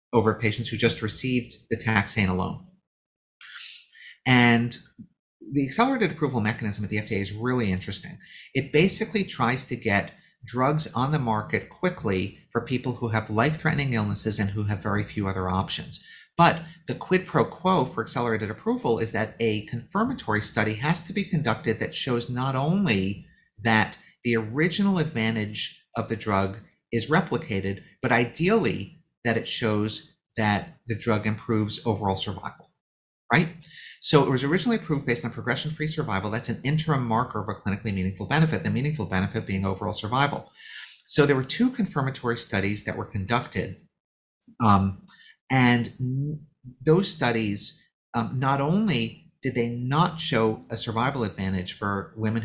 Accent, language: American, English